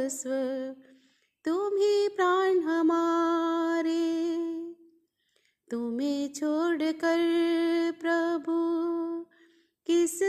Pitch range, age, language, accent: 320-385 Hz, 20-39, Hindi, native